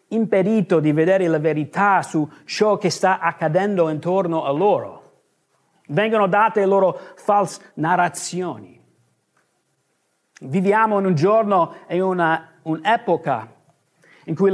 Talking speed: 110 wpm